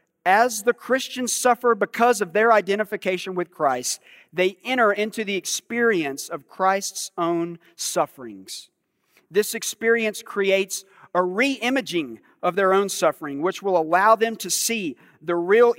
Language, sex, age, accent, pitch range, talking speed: English, male, 40-59, American, 175-225 Hz, 135 wpm